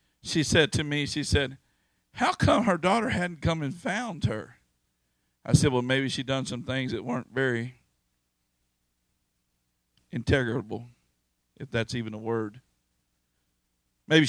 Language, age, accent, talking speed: English, 50-69, American, 140 wpm